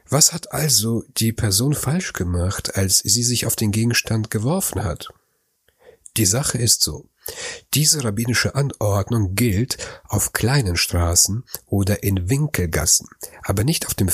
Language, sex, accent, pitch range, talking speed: German, male, German, 95-125 Hz, 140 wpm